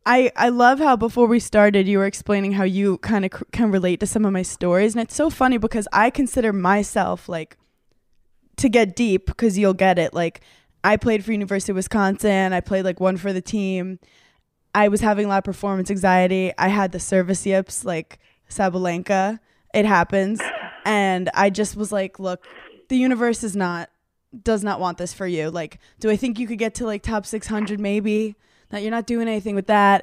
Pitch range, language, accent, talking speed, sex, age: 185-225 Hz, English, American, 210 wpm, female, 20-39